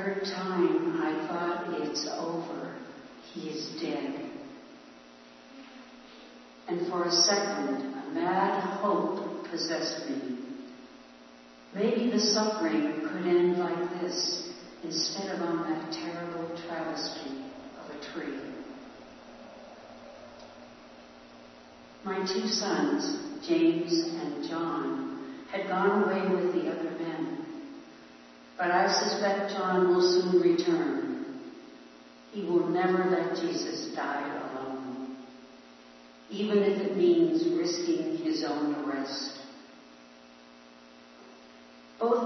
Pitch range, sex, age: 130-210 Hz, female, 60-79